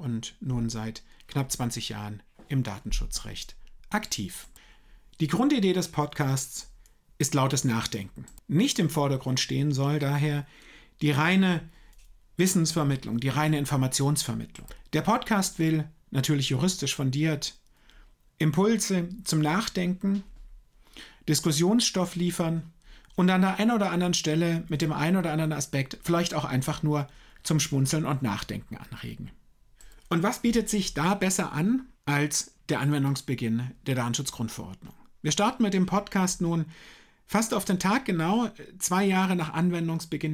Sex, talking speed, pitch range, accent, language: male, 130 wpm, 130-180 Hz, German, German